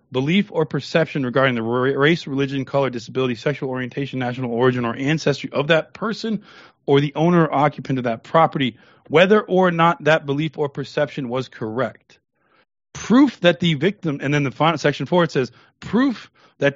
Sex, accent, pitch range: male, American, 125-155 Hz